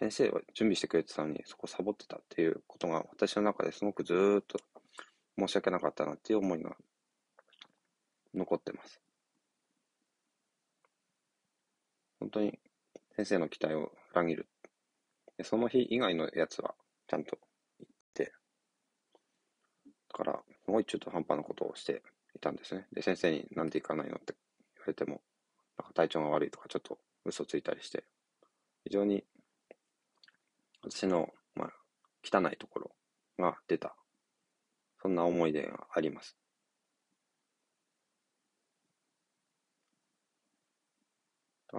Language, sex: Japanese, male